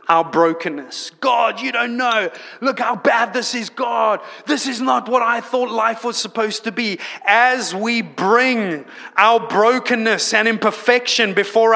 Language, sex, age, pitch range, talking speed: English, male, 30-49, 185-235 Hz, 160 wpm